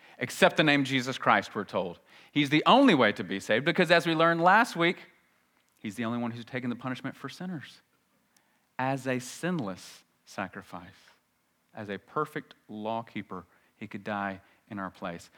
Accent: American